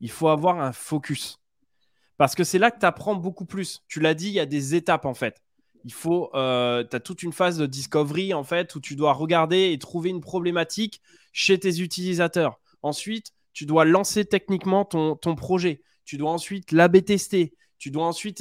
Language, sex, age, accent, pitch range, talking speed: French, male, 20-39, French, 145-190 Hz, 195 wpm